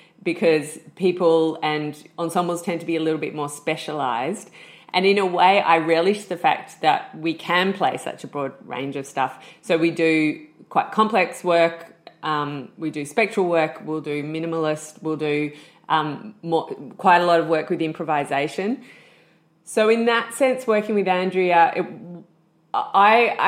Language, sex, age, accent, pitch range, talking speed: English, female, 30-49, Australian, 155-180 Hz, 160 wpm